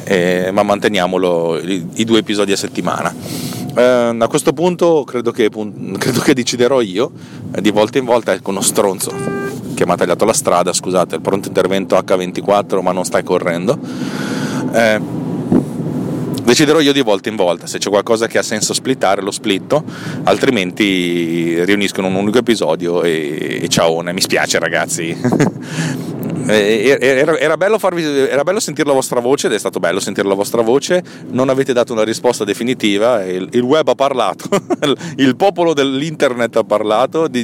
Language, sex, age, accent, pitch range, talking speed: Italian, male, 30-49, native, 100-135 Hz, 160 wpm